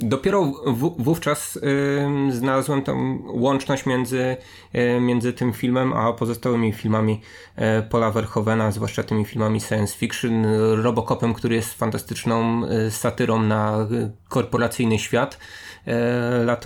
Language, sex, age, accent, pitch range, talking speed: Polish, male, 20-39, native, 110-135 Hz, 125 wpm